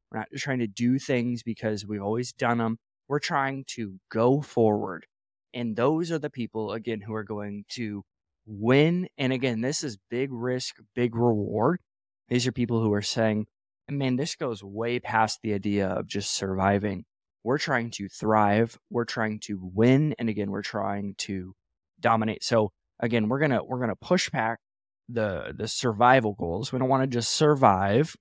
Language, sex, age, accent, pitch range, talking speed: English, male, 20-39, American, 110-140 Hz, 180 wpm